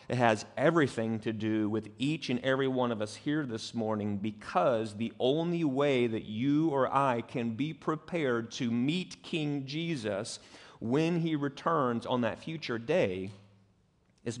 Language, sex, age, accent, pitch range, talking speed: English, male, 30-49, American, 120-160 Hz, 160 wpm